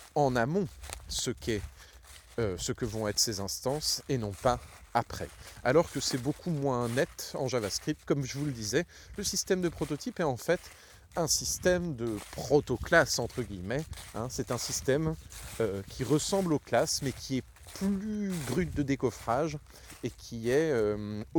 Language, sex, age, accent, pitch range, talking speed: French, male, 30-49, French, 105-140 Hz, 170 wpm